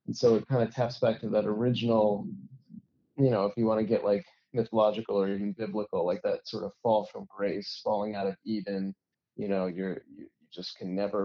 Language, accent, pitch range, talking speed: English, American, 105-125 Hz, 215 wpm